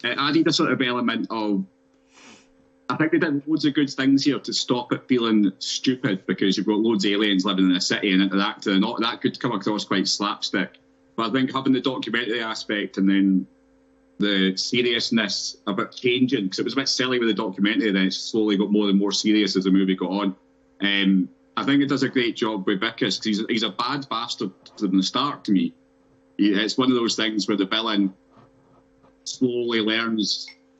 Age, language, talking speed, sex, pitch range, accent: 30-49, English, 215 wpm, male, 95-110 Hz, British